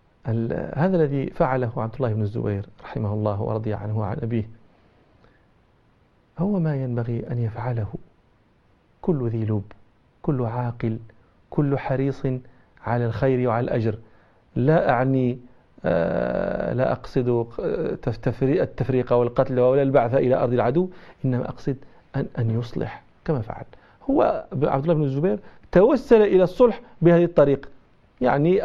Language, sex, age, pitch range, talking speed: Arabic, male, 40-59, 120-180 Hz, 125 wpm